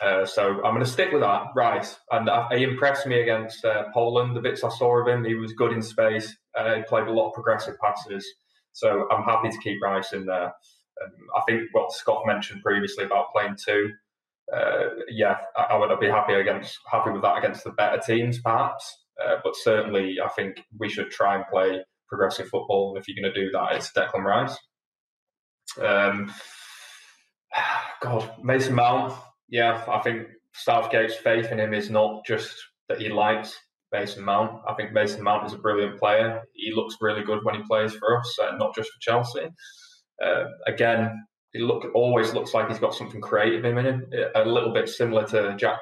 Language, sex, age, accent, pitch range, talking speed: English, male, 20-39, British, 105-120 Hz, 200 wpm